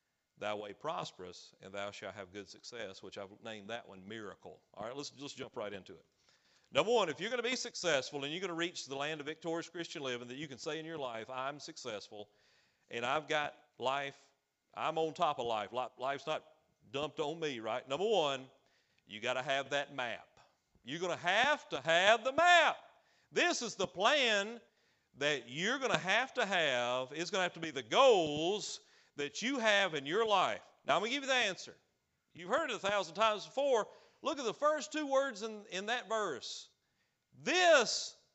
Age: 40-59